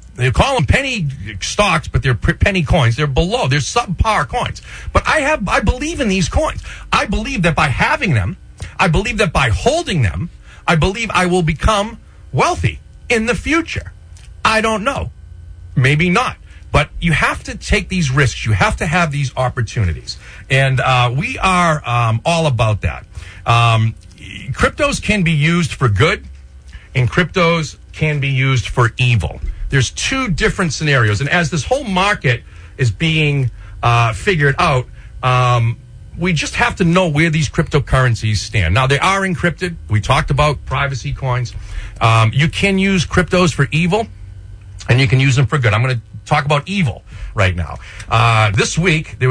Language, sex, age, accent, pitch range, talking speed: English, male, 50-69, American, 110-170 Hz, 175 wpm